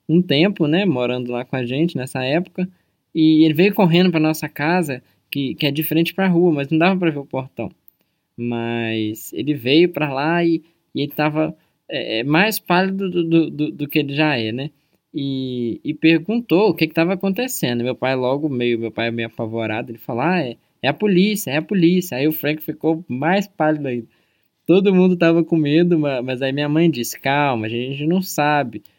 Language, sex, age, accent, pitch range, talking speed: Portuguese, male, 20-39, Brazilian, 135-175 Hz, 205 wpm